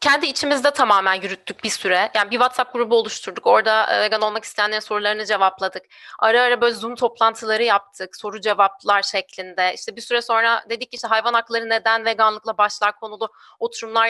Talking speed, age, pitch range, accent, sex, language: 170 wpm, 30-49, 215-255 Hz, native, female, Turkish